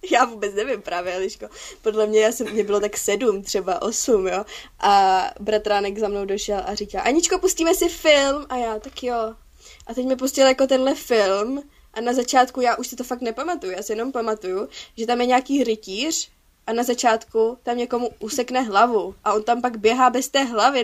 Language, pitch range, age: Czech, 215-260 Hz, 20-39